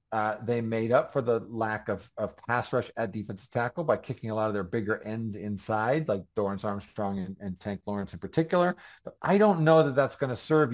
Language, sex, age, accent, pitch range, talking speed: English, male, 40-59, American, 105-130 Hz, 230 wpm